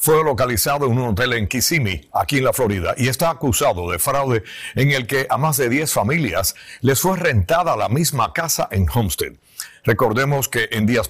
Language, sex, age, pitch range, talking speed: Spanish, male, 60-79, 105-135 Hz, 195 wpm